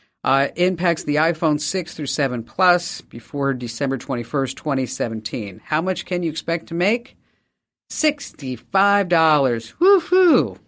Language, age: English, 50-69